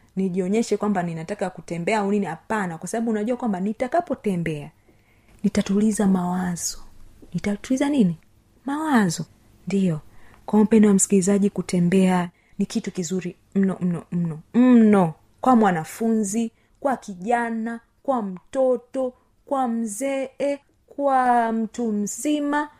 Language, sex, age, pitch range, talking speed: Swahili, female, 30-49, 180-230 Hz, 110 wpm